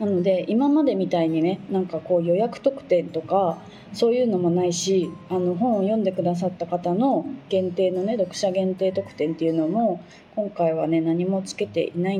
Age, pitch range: 20-39, 175-215 Hz